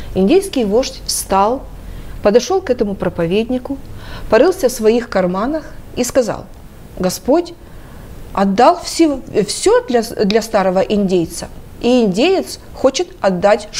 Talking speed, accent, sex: 110 wpm, native, female